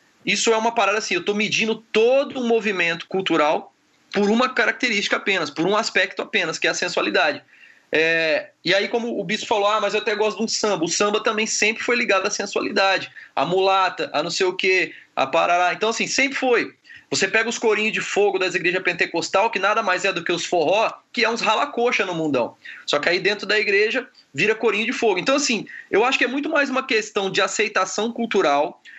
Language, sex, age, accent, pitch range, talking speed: Portuguese, male, 20-39, Brazilian, 195-245 Hz, 220 wpm